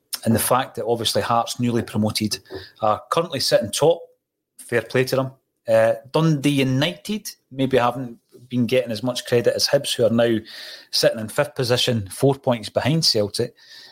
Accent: British